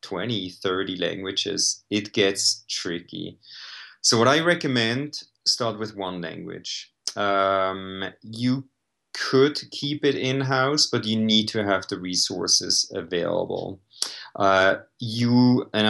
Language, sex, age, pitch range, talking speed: English, male, 30-49, 95-120 Hz, 115 wpm